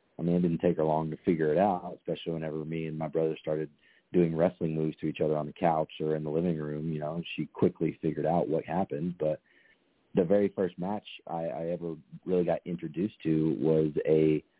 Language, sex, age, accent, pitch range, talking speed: English, male, 40-59, American, 80-90 Hz, 225 wpm